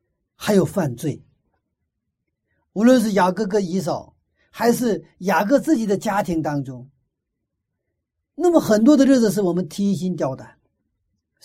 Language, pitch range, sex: Chinese, 140-225 Hz, male